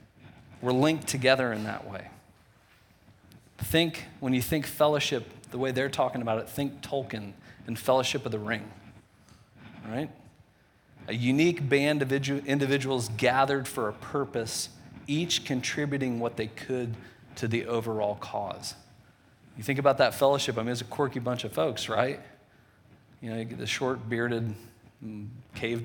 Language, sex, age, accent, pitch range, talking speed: English, male, 40-59, American, 110-135 Hz, 150 wpm